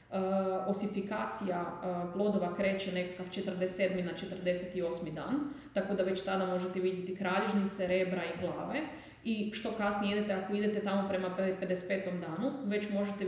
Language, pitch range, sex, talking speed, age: Croatian, 185-200 Hz, female, 145 wpm, 20-39